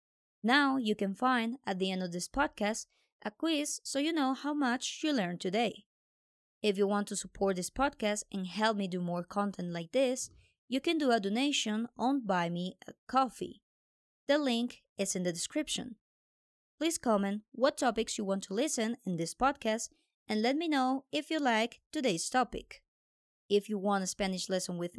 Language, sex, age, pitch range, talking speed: English, male, 20-39, 195-265 Hz, 185 wpm